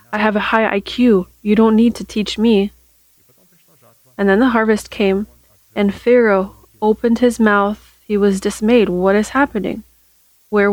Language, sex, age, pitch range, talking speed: English, female, 30-49, 190-220 Hz, 155 wpm